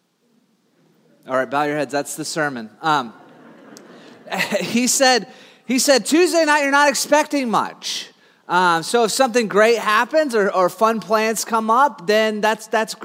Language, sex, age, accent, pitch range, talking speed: English, male, 30-49, American, 170-235 Hz, 155 wpm